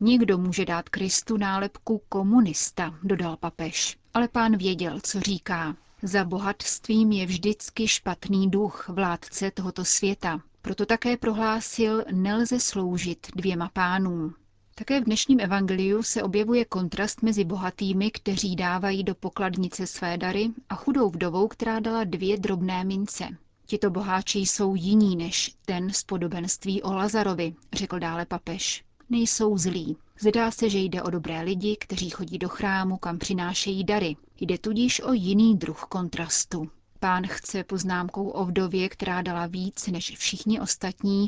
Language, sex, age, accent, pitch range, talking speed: Czech, female, 30-49, native, 180-215 Hz, 140 wpm